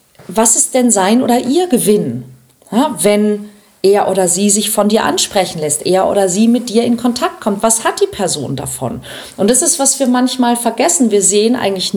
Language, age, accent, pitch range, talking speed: German, 40-59, German, 190-240 Hz, 195 wpm